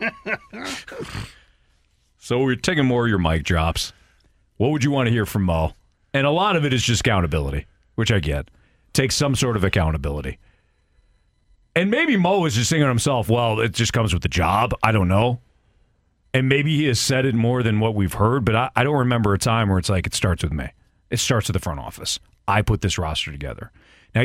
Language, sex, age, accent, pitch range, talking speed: English, male, 40-59, American, 95-125 Hz, 215 wpm